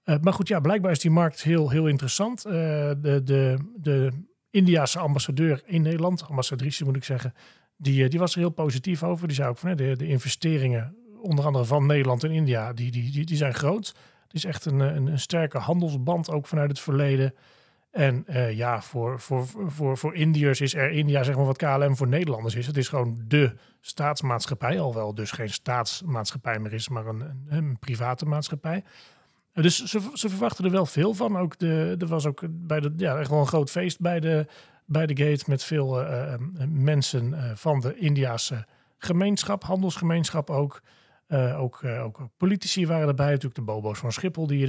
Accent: Dutch